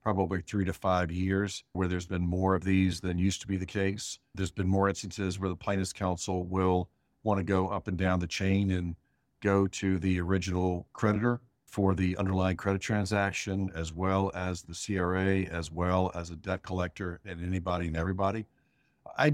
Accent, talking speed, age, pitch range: American, 190 wpm, 50-69, 90-105 Hz